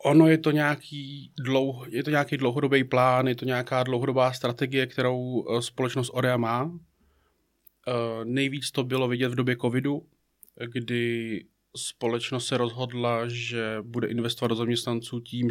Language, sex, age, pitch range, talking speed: Czech, male, 30-49, 115-130 Hz, 145 wpm